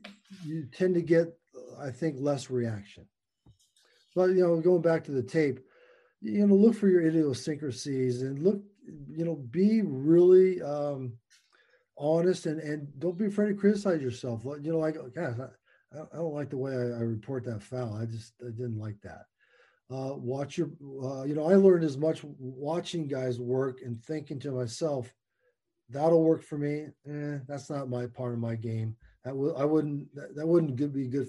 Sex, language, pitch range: male, English, 125-160 Hz